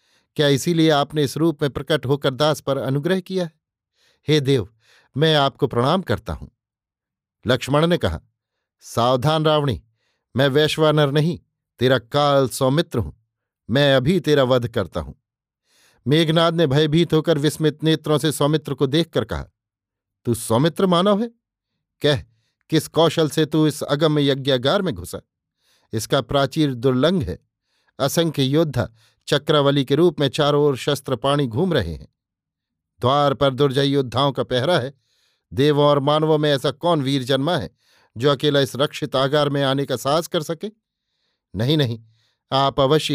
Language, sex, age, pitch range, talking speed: Hindi, male, 50-69, 130-155 Hz, 150 wpm